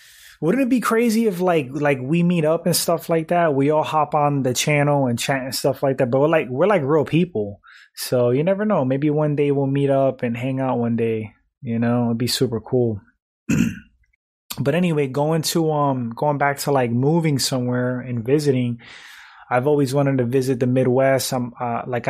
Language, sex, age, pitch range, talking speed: English, male, 20-39, 120-145 Hz, 210 wpm